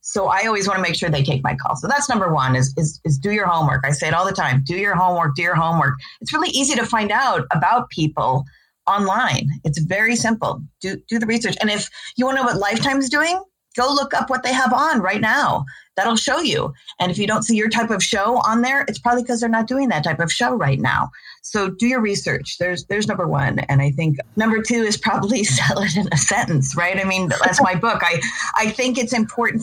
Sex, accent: female, American